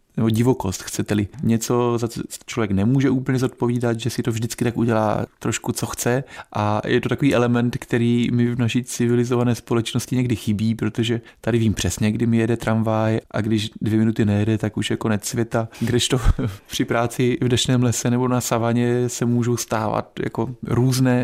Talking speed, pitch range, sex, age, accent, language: 180 wpm, 115-125 Hz, male, 20-39, native, Czech